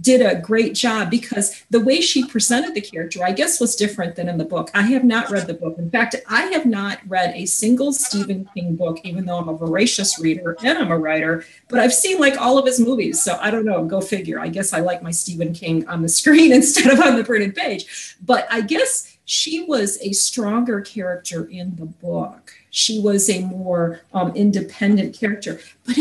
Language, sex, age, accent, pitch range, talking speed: English, female, 40-59, American, 175-230 Hz, 220 wpm